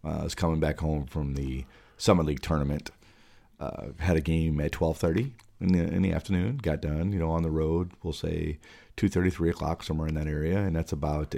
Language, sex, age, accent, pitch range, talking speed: English, male, 40-59, American, 75-100 Hz, 205 wpm